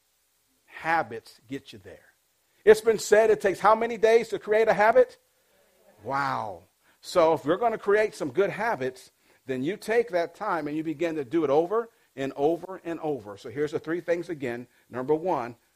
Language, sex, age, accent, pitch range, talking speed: English, male, 50-69, American, 125-175 Hz, 190 wpm